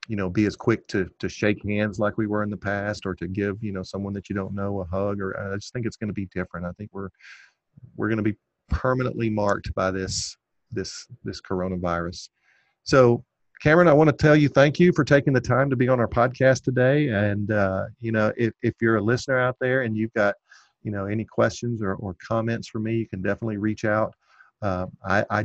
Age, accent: 50-69, American